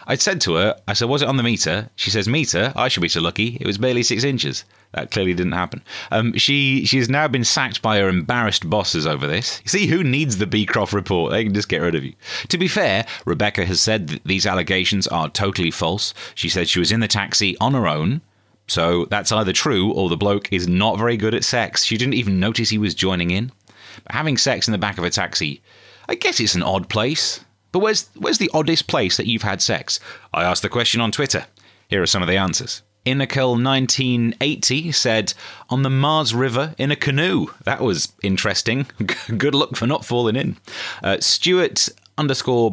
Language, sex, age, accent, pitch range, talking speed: English, male, 30-49, British, 100-130 Hz, 220 wpm